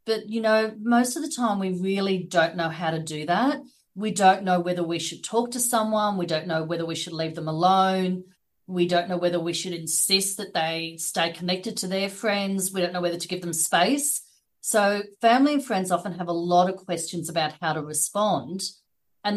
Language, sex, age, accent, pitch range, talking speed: English, female, 40-59, Australian, 170-205 Hz, 215 wpm